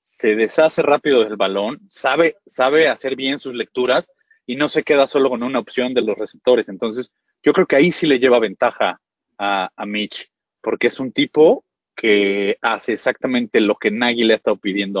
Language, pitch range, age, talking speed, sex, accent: Spanish, 110-150 Hz, 30-49, 190 wpm, male, Mexican